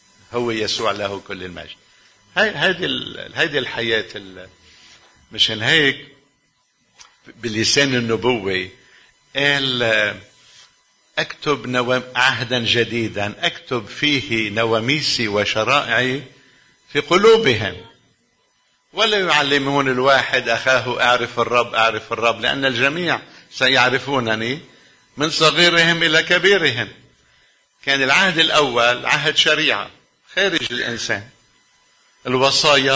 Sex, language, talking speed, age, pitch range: male, Arabic, 85 wpm, 50-69, 115-145 Hz